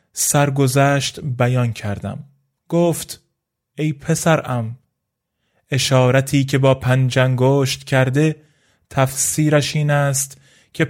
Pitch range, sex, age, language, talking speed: 125-150 Hz, male, 20-39, Persian, 90 wpm